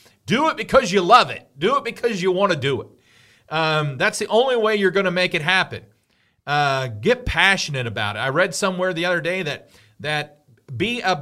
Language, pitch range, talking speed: English, 125-185 Hz, 210 wpm